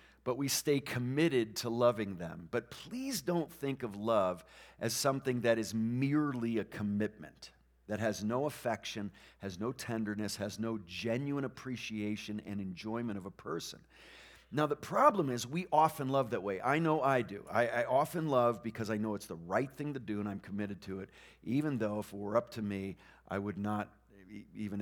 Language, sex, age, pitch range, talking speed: English, male, 50-69, 100-130 Hz, 190 wpm